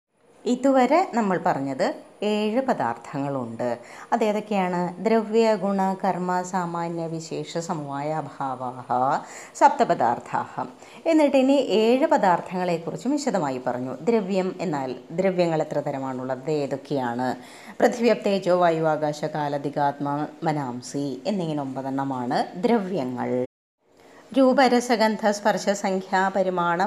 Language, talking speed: Malayalam, 80 wpm